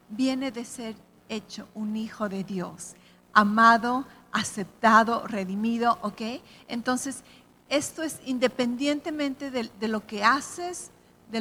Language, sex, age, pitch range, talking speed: English, female, 40-59, 220-270 Hz, 110 wpm